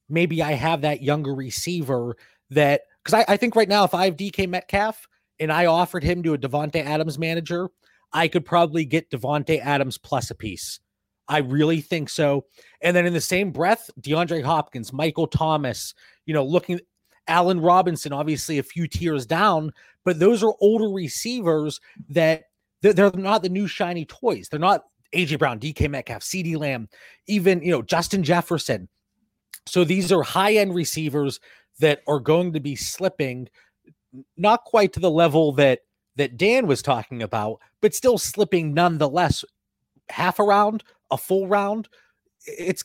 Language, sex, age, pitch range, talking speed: English, male, 30-49, 150-190 Hz, 165 wpm